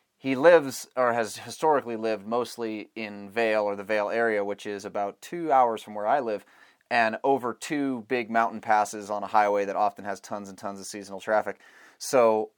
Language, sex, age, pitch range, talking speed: English, male, 30-49, 100-120 Hz, 195 wpm